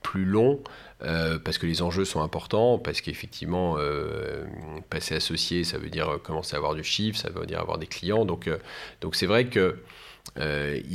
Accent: French